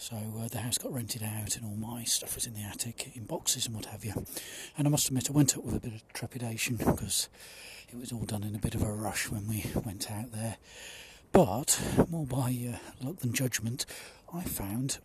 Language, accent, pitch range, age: English, British, 115-145 Hz, 40-59